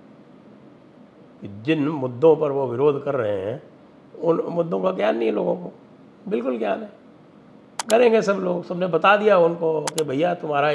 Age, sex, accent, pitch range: 60-79, male, Indian, 125-165 Hz